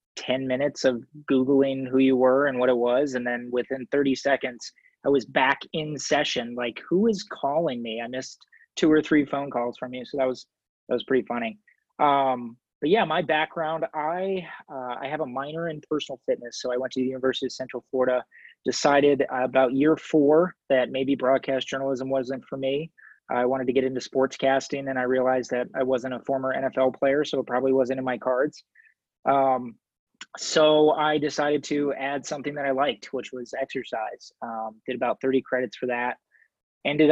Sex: male